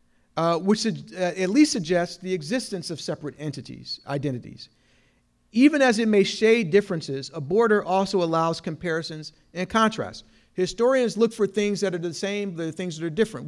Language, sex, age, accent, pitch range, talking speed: English, male, 50-69, American, 170-215 Hz, 170 wpm